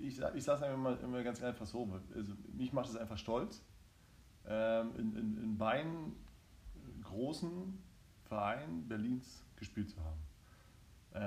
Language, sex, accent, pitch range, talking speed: German, male, German, 105-125 Hz, 135 wpm